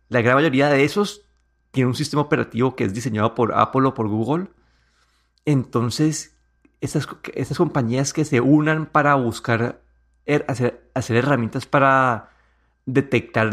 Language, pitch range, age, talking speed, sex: Spanish, 115-140 Hz, 30-49, 140 wpm, male